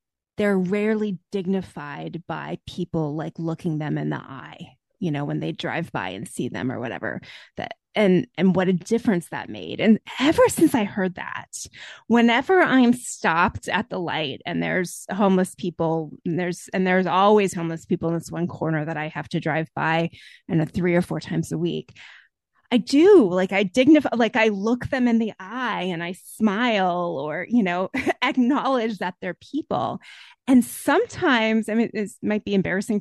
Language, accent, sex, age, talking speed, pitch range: English, American, female, 20-39, 180 wpm, 180-255 Hz